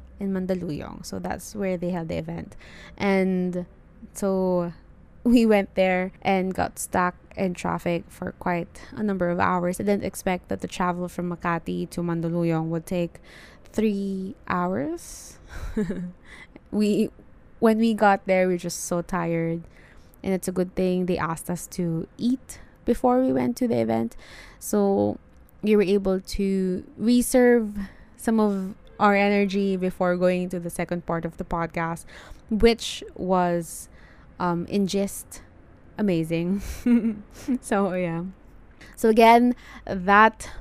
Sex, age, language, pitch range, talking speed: female, 20-39, English, 175-210 Hz, 140 wpm